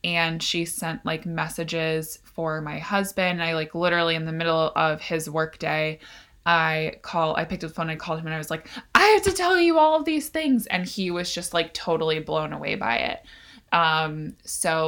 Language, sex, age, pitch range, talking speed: English, female, 20-39, 155-175 Hz, 215 wpm